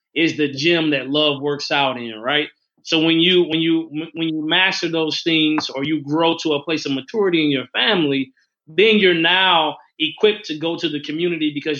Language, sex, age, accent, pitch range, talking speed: English, male, 30-49, American, 145-190 Hz, 205 wpm